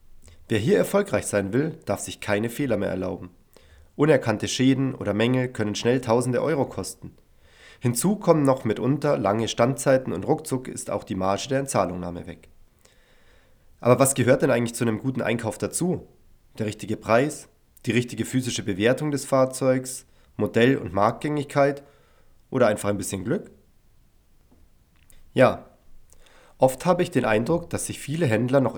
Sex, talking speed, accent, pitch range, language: male, 150 wpm, German, 100-135 Hz, German